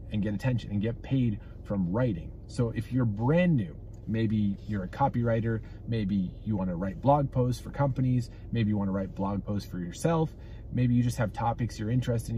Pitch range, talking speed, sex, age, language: 100-120 Hz, 200 wpm, male, 30-49, English